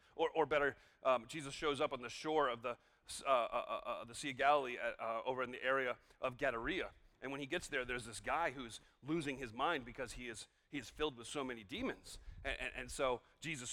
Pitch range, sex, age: 140-200 Hz, male, 40-59